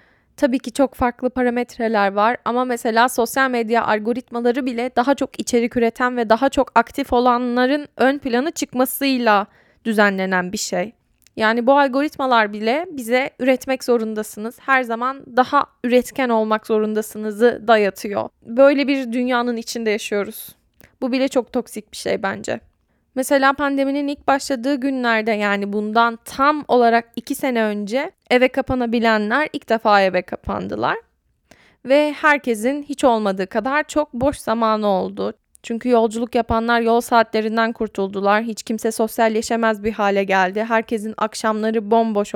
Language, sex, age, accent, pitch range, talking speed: Turkish, female, 10-29, native, 220-255 Hz, 135 wpm